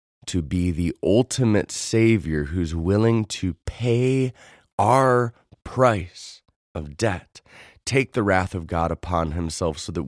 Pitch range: 85-125 Hz